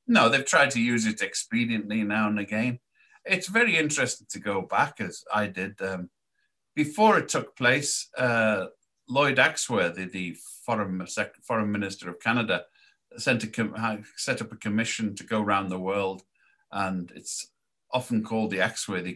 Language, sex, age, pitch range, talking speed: English, male, 50-69, 105-140 Hz, 150 wpm